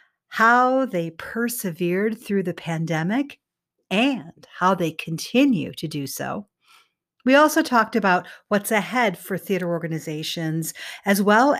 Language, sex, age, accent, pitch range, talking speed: English, female, 50-69, American, 170-240 Hz, 125 wpm